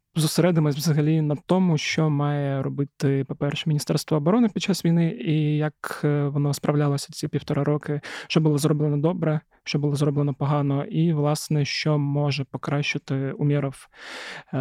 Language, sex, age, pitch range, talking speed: Ukrainian, male, 20-39, 140-155 Hz, 140 wpm